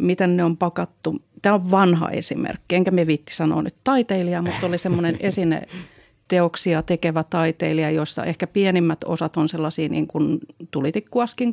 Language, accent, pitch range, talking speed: Finnish, native, 165-200 Hz, 150 wpm